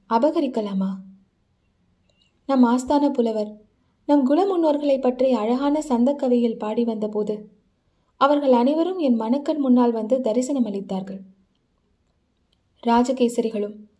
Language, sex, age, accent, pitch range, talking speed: Tamil, female, 20-39, native, 200-260 Hz, 90 wpm